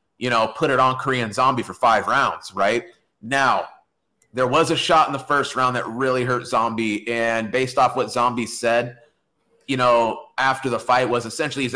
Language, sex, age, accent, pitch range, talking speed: English, male, 30-49, American, 120-150 Hz, 195 wpm